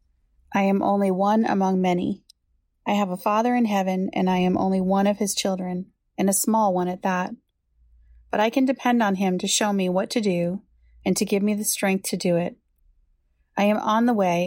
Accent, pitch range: American, 175-205 Hz